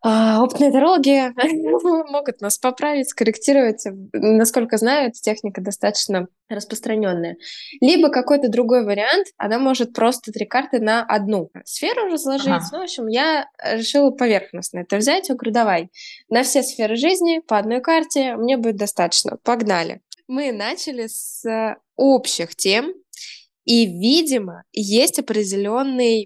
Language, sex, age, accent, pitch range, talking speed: Russian, female, 10-29, native, 200-260 Hz, 130 wpm